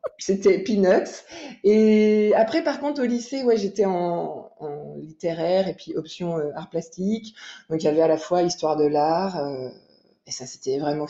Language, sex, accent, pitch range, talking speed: French, female, French, 165-215 Hz, 185 wpm